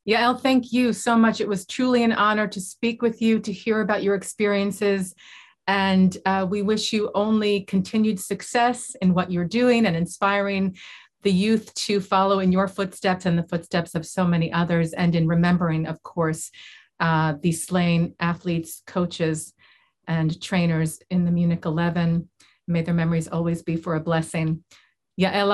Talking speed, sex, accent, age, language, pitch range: 170 wpm, female, American, 40-59, English, 170-205 Hz